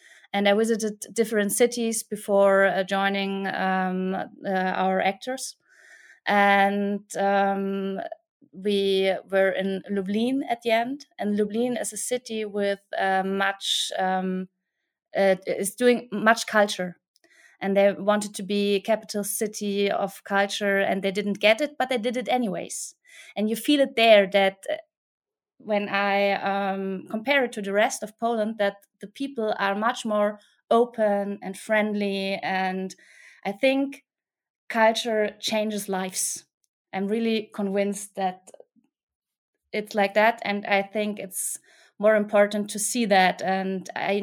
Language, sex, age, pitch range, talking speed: German, female, 20-39, 195-230 Hz, 140 wpm